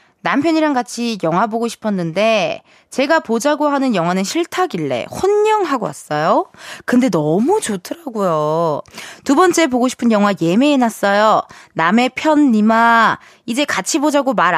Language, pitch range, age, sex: Korean, 190-290 Hz, 20-39, female